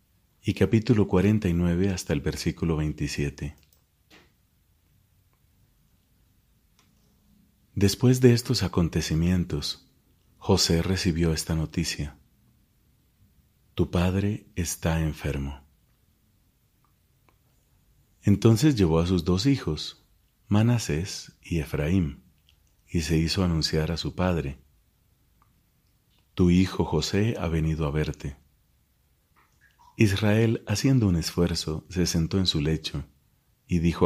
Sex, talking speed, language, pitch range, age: male, 95 wpm, Spanish, 80-100 Hz, 40-59